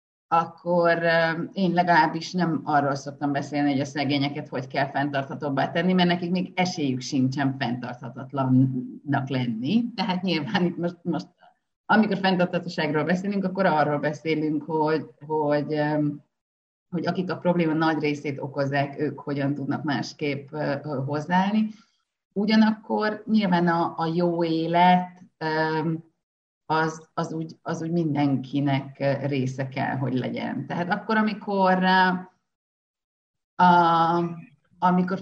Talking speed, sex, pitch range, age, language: 110 wpm, female, 150-185 Hz, 30-49, Hungarian